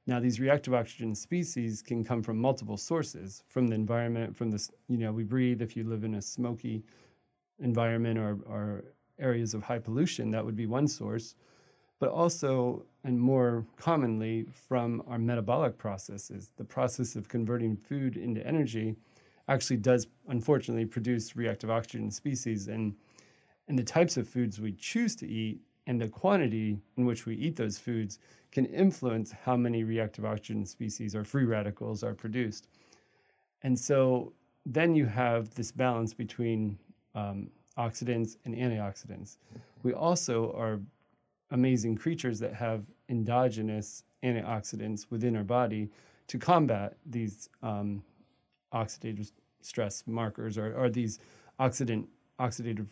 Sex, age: male, 30-49